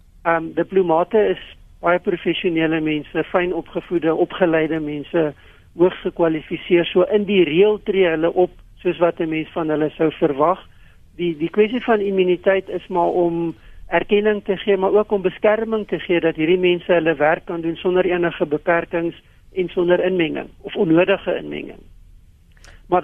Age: 60-79